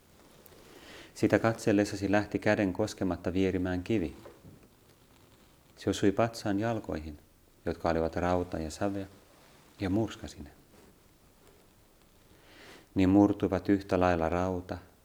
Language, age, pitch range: Finnish, 30-49, 80-105 Hz